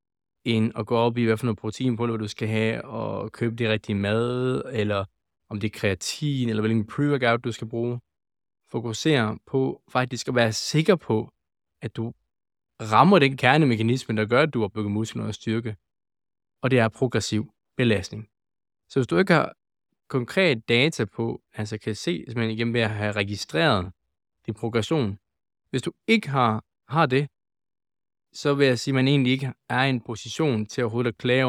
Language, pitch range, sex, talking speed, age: Danish, 105-135 Hz, male, 185 wpm, 20-39